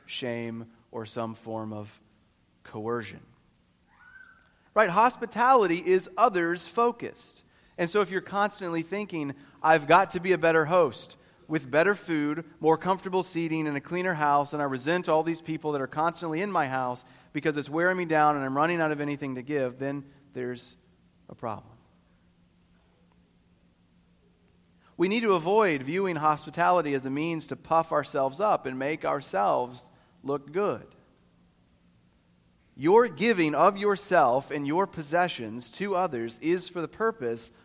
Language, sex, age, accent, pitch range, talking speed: English, male, 40-59, American, 120-175 Hz, 150 wpm